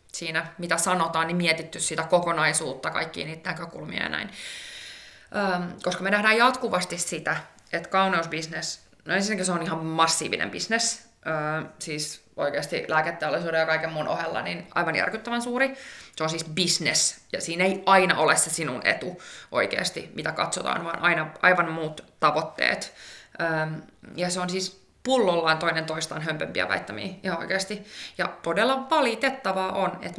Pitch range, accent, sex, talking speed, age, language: 170-215 Hz, native, female, 150 wpm, 20-39, Finnish